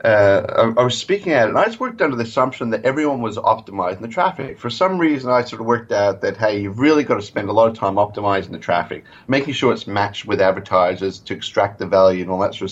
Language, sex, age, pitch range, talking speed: English, male, 30-49, 105-135 Hz, 280 wpm